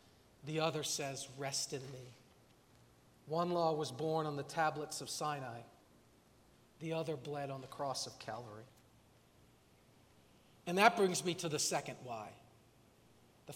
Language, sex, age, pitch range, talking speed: English, male, 50-69, 145-200 Hz, 140 wpm